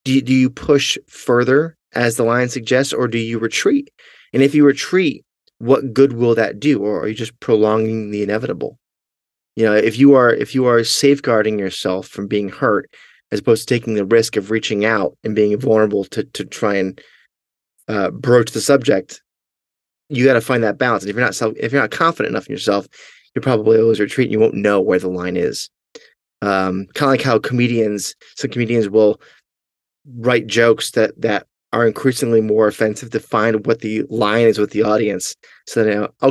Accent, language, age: American, English, 30-49